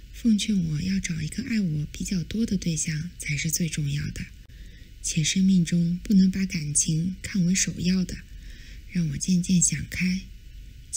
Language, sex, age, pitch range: Chinese, female, 20-39, 155-185 Hz